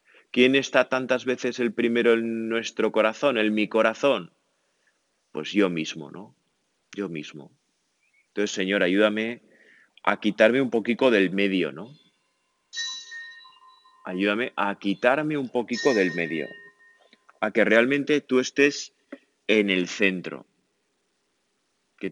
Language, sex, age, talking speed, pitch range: Spanish, male, 30-49, 120 wpm, 100-120 Hz